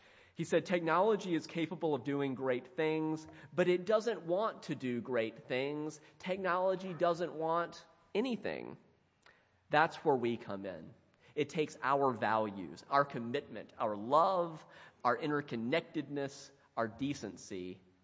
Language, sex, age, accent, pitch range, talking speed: English, male, 30-49, American, 105-140 Hz, 125 wpm